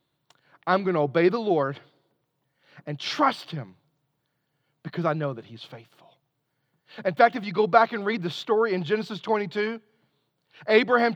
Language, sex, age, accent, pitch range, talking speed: English, male, 40-59, American, 170-255 Hz, 155 wpm